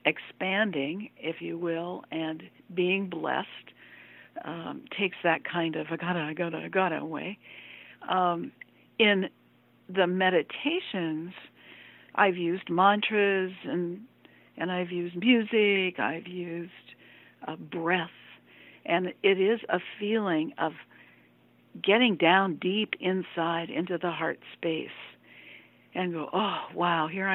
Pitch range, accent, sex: 170-215 Hz, American, female